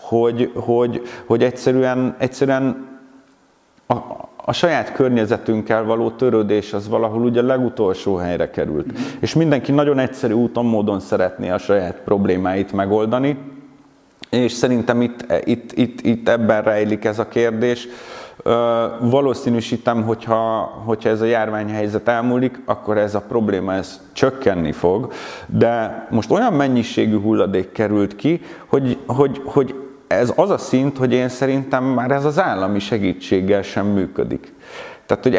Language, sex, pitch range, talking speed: Hungarian, male, 105-130 Hz, 140 wpm